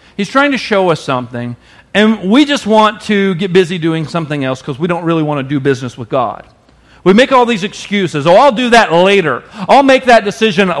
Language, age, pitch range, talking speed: English, 40-59, 195-275 Hz, 220 wpm